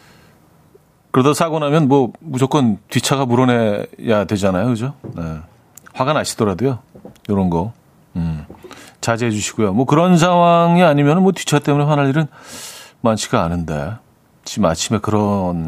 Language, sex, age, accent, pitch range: Korean, male, 40-59, native, 110-155 Hz